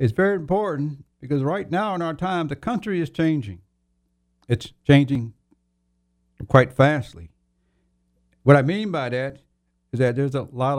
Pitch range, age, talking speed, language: 95-150 Hz, 60-79, 150 wpm, English